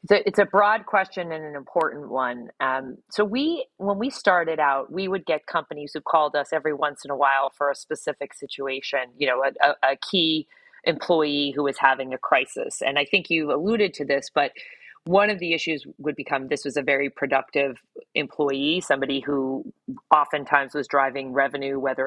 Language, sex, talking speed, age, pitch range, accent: English, female, 190 wpm, 30-49, 140-175 Hz, American